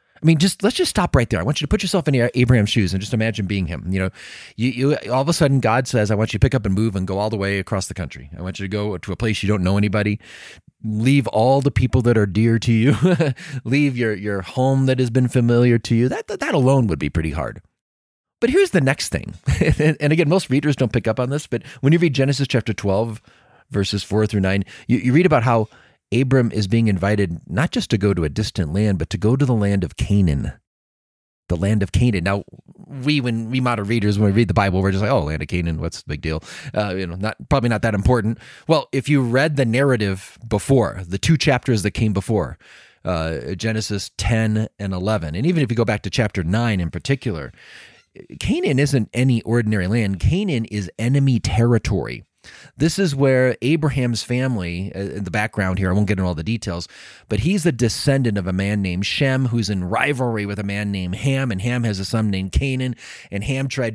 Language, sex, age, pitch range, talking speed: English, male, 30-49, 100-130 Hz, 235 wpm